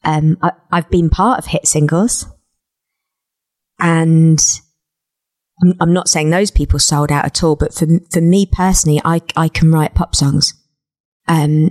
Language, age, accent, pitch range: English, 20-39, British, 155-175 Hz